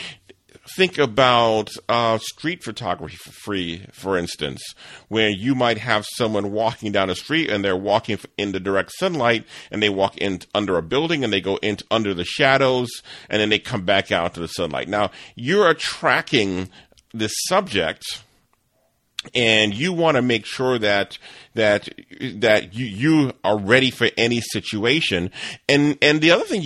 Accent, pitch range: American, 100-150 Hz